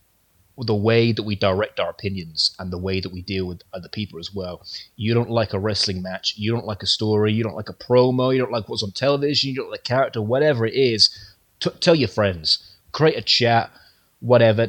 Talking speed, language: 230 wpm, English